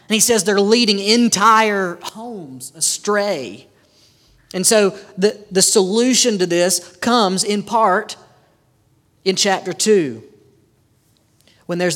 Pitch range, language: 145-210 Hz, English